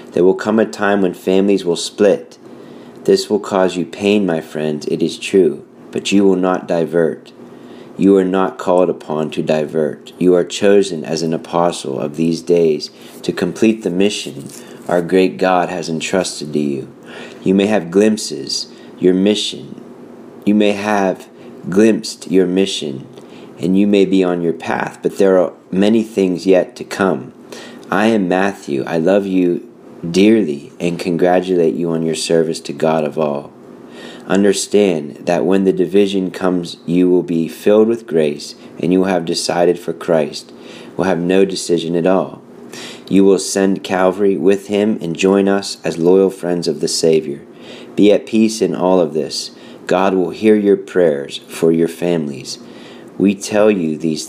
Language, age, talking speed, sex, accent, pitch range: English, 40-59, 170 wpm, male, American, 85-100 Hz